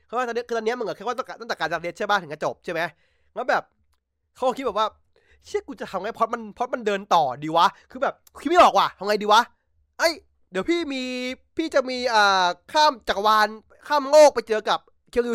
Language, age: Thai, 20-39